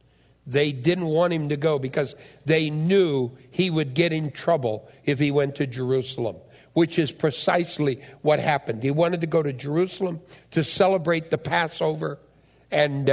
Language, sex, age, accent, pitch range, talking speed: English, male, 60-79, American, 145-195 Hz, 160 wpm